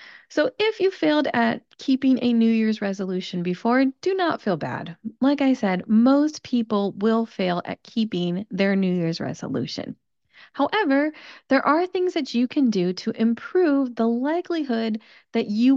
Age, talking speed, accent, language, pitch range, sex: 30-49, 160 wpm, American, English, 195-270 Hz, female